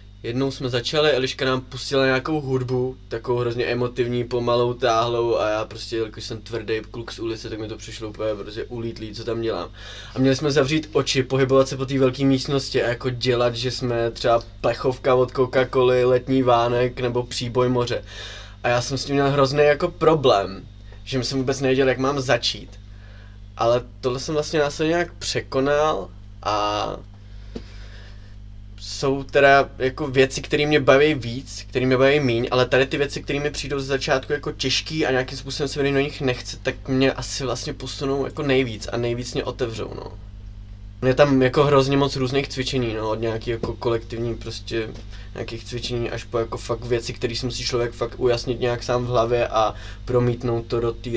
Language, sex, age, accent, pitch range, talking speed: Czech, male, 20-39, native, 110-135 Hz, 190 wpm